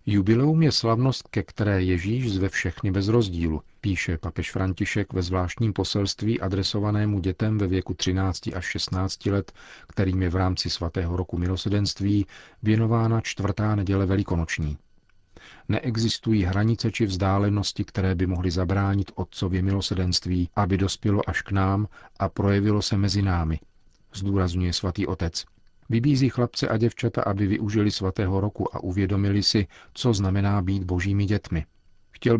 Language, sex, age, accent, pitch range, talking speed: Czech, male, 40-59, native, 90-105 Hz, 140 wpm